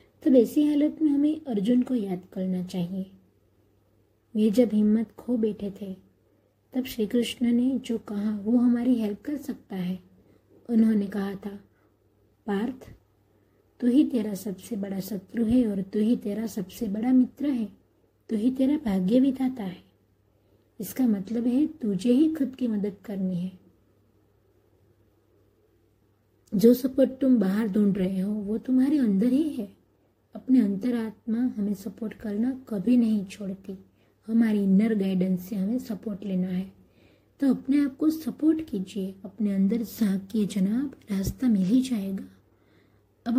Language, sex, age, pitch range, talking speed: Hindi, female, 20-39, 185-245 Hz, 155 wpm